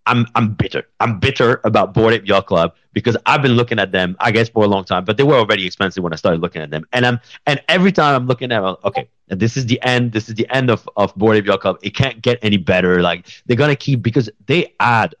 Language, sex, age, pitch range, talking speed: English, male, 30-49, 90-120 Hz, 280 wpm